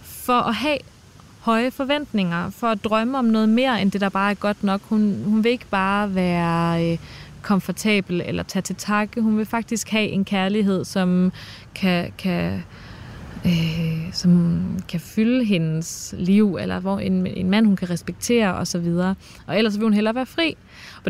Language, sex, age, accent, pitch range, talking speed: Danish, female, 20-39, native, 185-225 Hz, 180 wpm